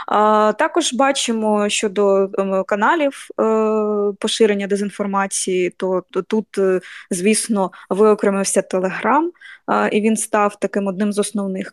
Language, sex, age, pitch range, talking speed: Ukrainian, female, 20-39, 195-225 Hz, 90 wpm